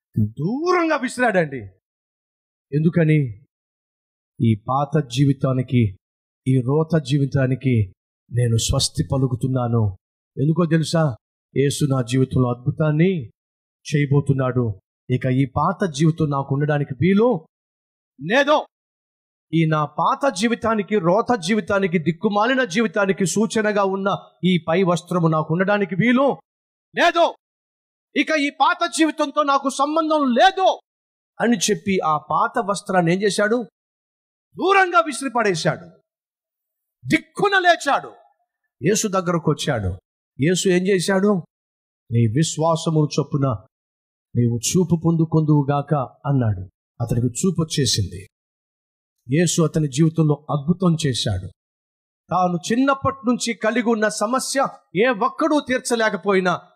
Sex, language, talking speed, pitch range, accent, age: male, Telugu, 95 wpm, 135-220 Hz, native, 30-49